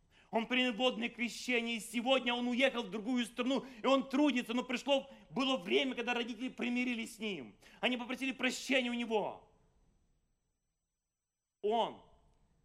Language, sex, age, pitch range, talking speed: English, male, 30-49, 155-240 Hz, 140 wpm